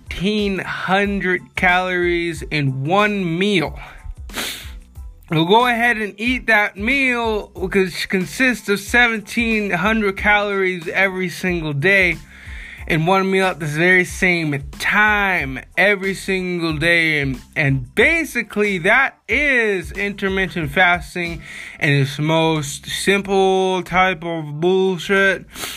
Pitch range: 155-195 Hz